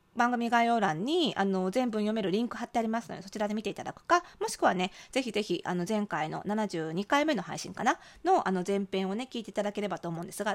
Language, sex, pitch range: Japanese, female, 195-285 Hz